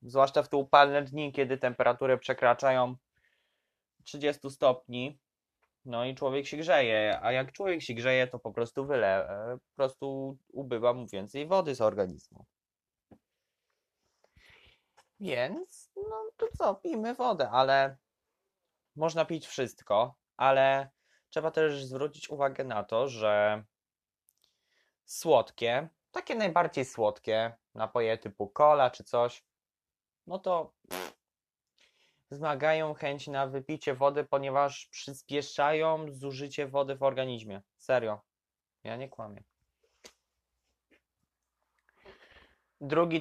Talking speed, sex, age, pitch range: 110 wpm, male, 20-39, 120-150 Hz